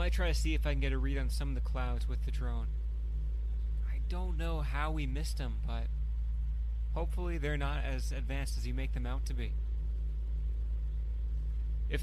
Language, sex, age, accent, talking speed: English, male, 30-49, American, 200 wpm